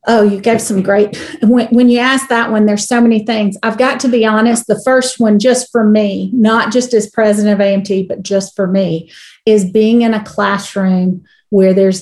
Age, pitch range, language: 40-59, 200-235 Hz, English